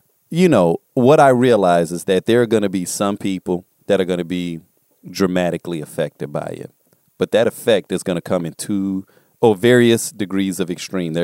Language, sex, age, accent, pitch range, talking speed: English, male, 40-59, American, 85-100 Hz, 210 wpm